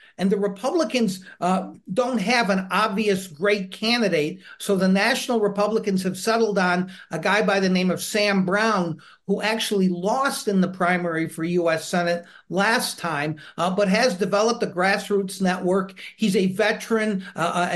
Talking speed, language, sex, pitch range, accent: 160 wpm, English, male, 180-210 Hz, American